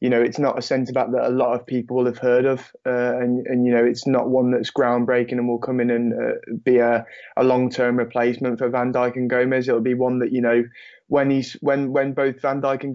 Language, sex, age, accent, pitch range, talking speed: English, male, 20-39, British, 120-135 Hz, 250 wpm